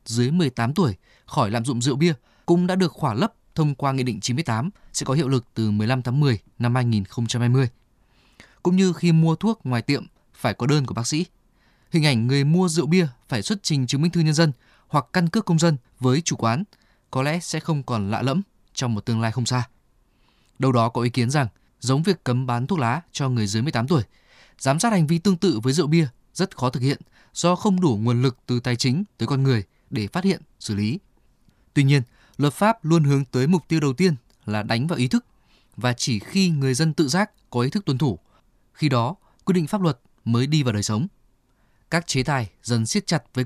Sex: male